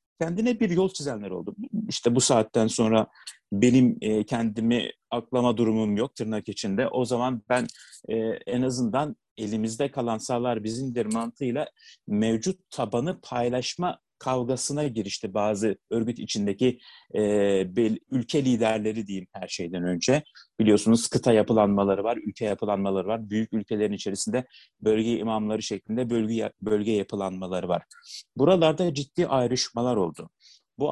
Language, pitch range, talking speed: Turkish, 110-150 Hz, 125 wpm